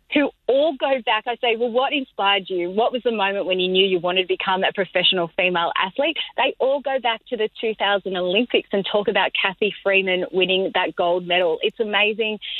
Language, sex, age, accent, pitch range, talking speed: English, female, 30-49, Australian, 175-210 Hz, 210 wpm